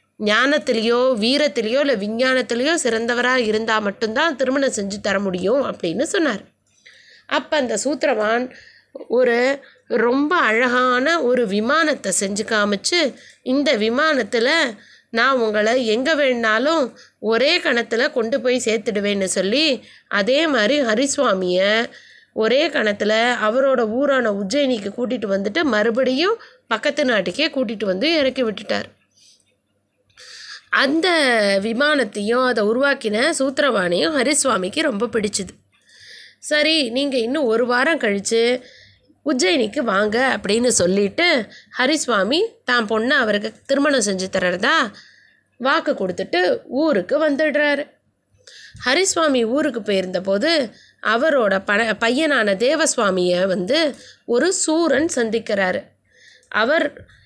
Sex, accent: female, native